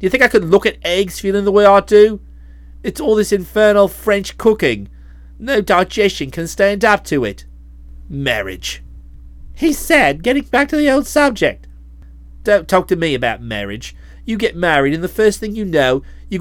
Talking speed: 185 wpm